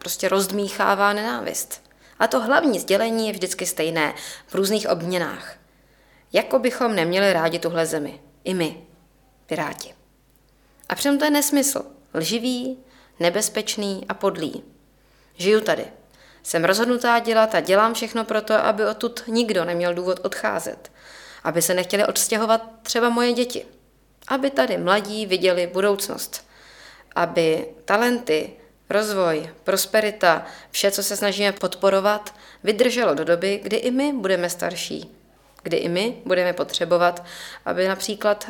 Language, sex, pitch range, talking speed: Czech, female, 170-220 Hz, 125 wpm